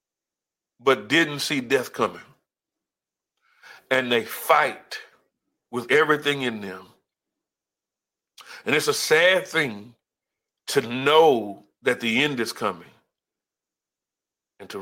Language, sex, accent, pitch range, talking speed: English, male, American, 115-160 Hz, 105 wpm